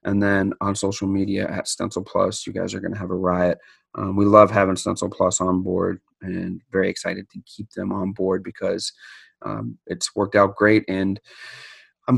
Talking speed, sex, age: 195 wpm, male, 30-49